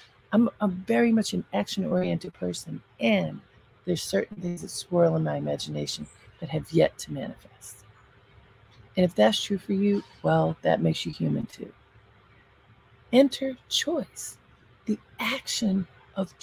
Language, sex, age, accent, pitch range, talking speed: English, female, 40-59, American, 135-210 Hz, 140 wpm